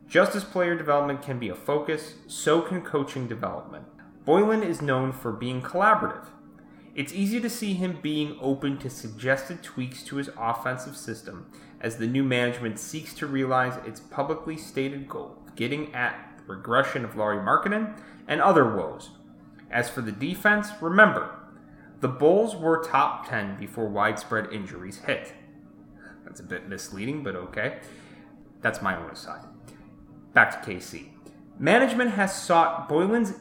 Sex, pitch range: male, 115-175 Hz